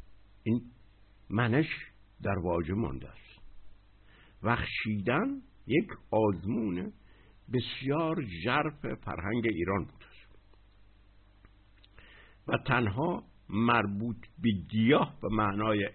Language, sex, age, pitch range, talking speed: Persian, male, 60-79, 100-105 Hz, 85 wpm